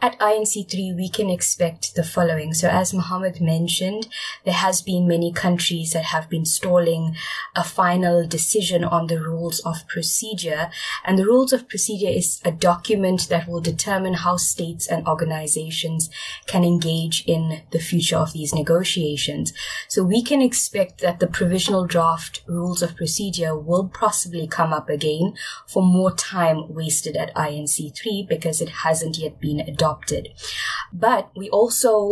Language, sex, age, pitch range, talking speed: English, female, 20-39, 160-190 Hz, 155 wpm